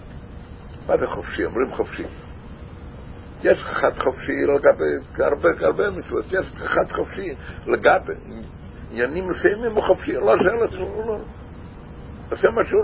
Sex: male